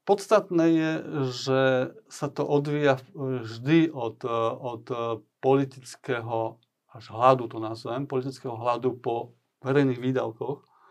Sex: male